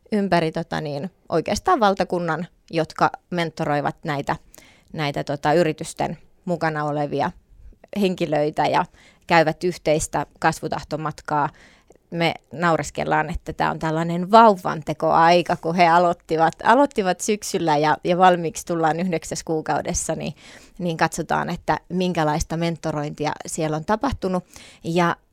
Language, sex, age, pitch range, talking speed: Finnish, female, 30-49, 160-185 Hz, 110 wpm